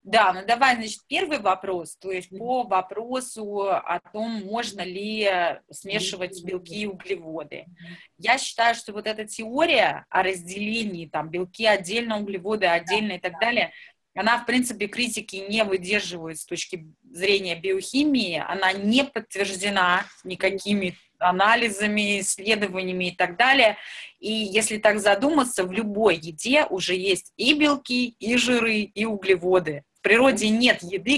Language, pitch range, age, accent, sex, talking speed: Russian, 185-225 Hz, 20-39, native, female, 140 wpm